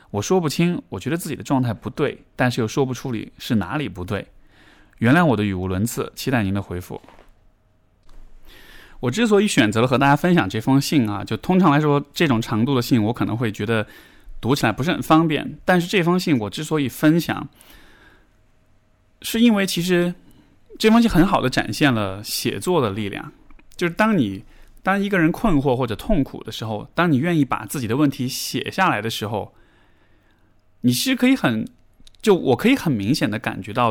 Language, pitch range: Chinese, 105-155 Hz